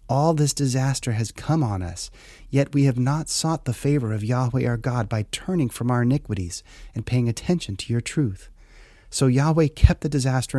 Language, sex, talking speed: English, male, 195 wpm